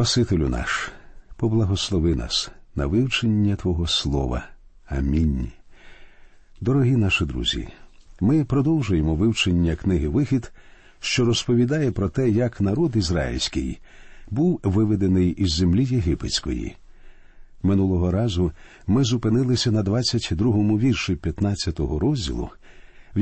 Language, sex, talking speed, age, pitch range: Ukrainian, male, 100 wpm, 50-69, 90-130 Hz